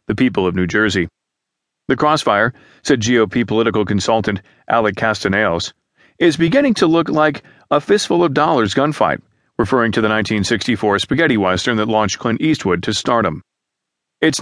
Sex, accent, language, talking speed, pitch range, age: male, American, English, 150 wpm, 105-135 Hz, 40-59